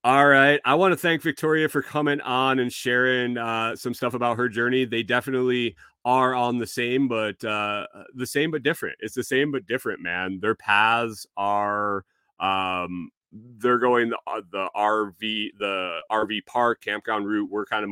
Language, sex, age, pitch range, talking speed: English, male, 30-49, 100-125 Hz, 175 wpm